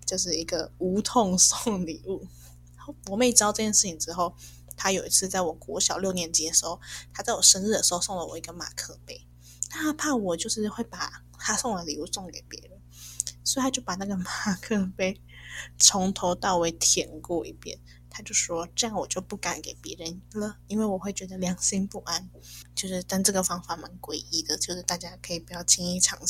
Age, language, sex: 20-39, Chinese, female